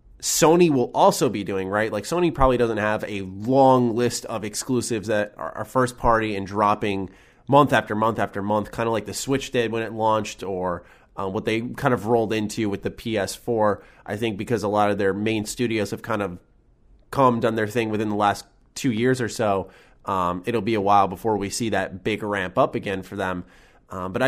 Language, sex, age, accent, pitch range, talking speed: English, male, 20-39, American, 100-125 Hz, 215 wpm